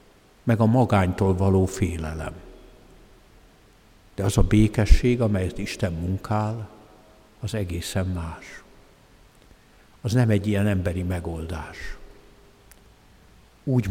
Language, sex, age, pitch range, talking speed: Hungarian, male, 60-79, 95-110 Hz, 95 wpm